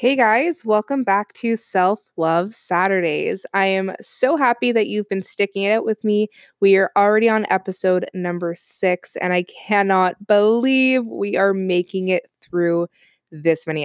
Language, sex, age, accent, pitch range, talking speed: English, female, 20-39, American, 175-215 Hz, 165 wpm